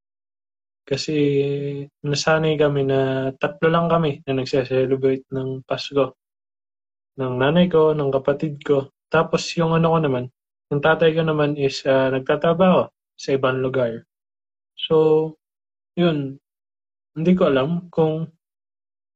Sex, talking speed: male, 120 wpm